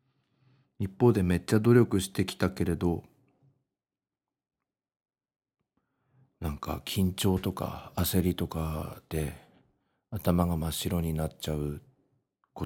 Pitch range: 85-120 Hz